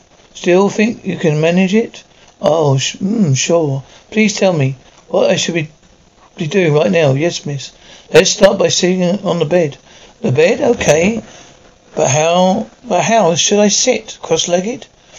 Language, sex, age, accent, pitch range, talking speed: English, male, 60-79, British, 155-195 Hz, 165 wpm